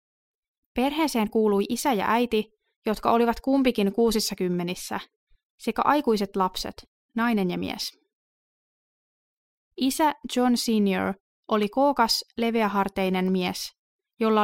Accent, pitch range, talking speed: native, 195-245 Hz, 100 wpm